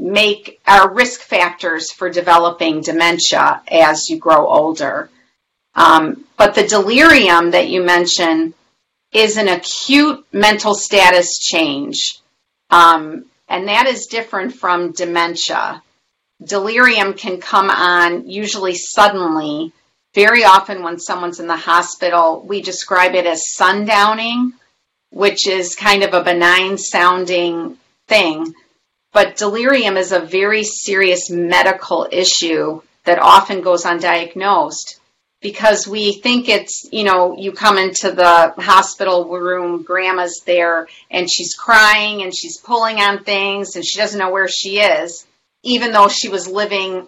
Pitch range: 175-210 Hz